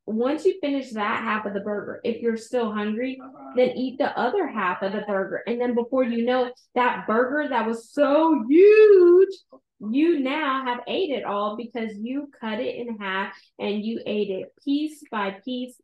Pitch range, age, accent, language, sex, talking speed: 205-265 Hz, 20-39, American, English, female, 190 wpm